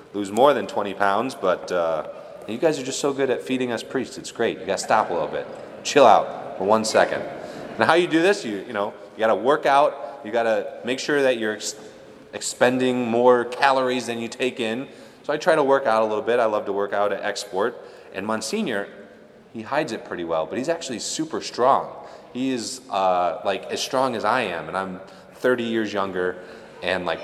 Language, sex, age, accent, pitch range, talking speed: English, male, 30-49, American, 100-130 Hz, 225 wpm